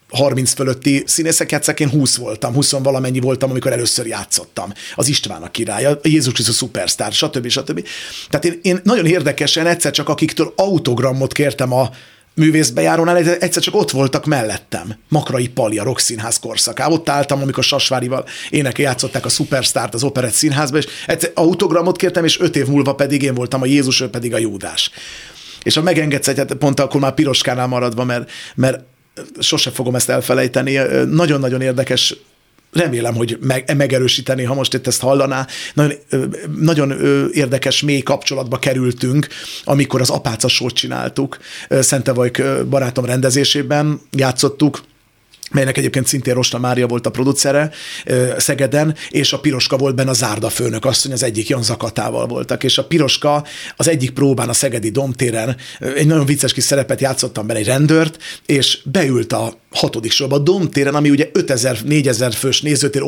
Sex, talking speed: male, 160 wpm